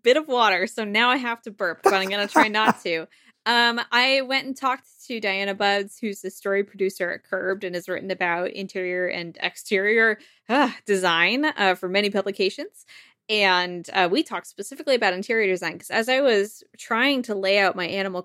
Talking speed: 195 wpm